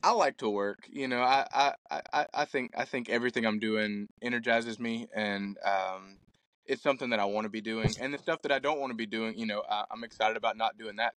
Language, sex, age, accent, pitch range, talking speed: English, male, 20-39, American, 105-120 Hz, 245 wpm